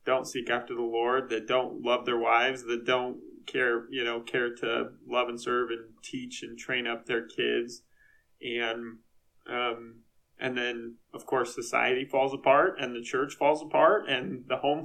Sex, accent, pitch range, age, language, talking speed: male, American, 115-130 Hz, 20-39, English, 180 wpm